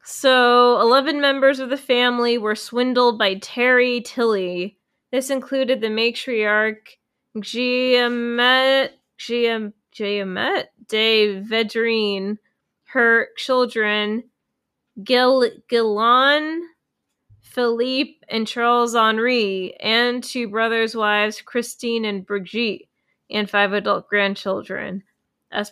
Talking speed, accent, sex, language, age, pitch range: 85 wpm, American, female, English, 20-39, 205-245 Hz